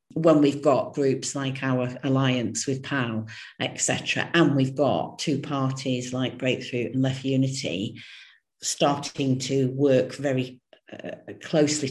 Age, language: 50-69, English